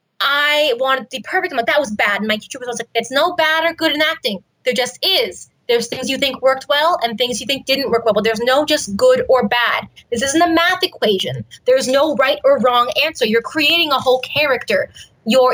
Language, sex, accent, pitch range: English, female, American, 235-310 Hz